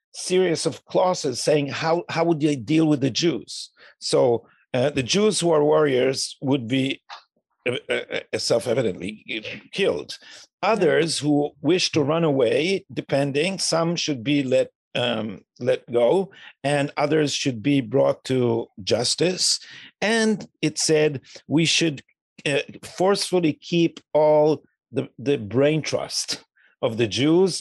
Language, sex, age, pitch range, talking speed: English, male, 50-69, 140-180 Hz, 135 wpm